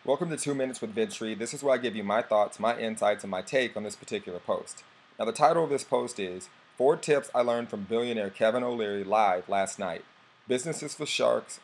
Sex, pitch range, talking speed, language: male, 105-120 Hz, 225 wpm, English